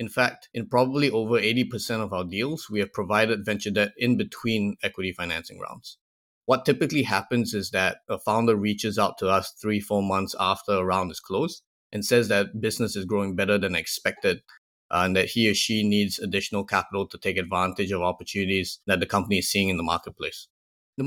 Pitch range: 95-115 Hz